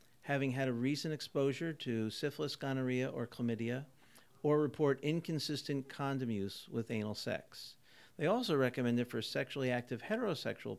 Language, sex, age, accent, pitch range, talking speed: English, male, 50-69, American, 115-140 Hz, 145 wpm